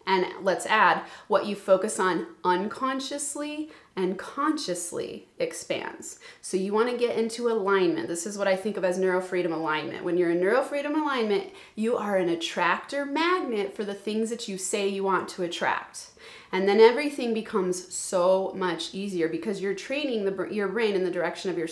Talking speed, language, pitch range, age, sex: 175 wpm, English, 190-265 Hz, 30-49, female